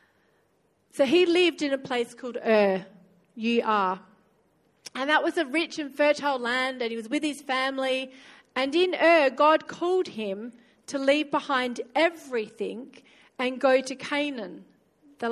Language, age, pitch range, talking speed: English, 40-59, 220-285 Hz, 150 wpm